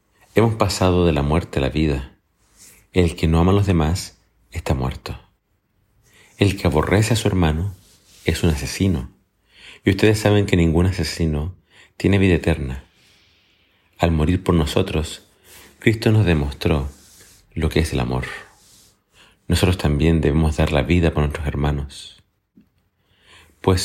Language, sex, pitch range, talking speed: Spanish, male, 80-95 Hz, 145 wpm